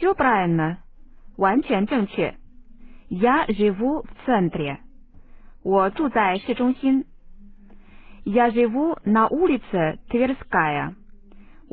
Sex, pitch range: female, 185-255 Hz